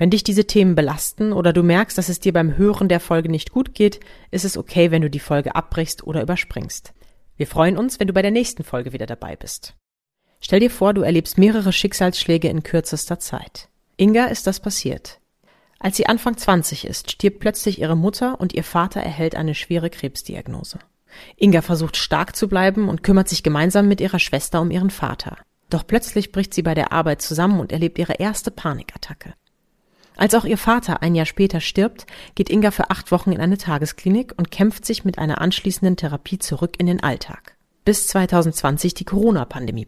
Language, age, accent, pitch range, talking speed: German, 30-49, German, 160-205 Hz, 195 wpm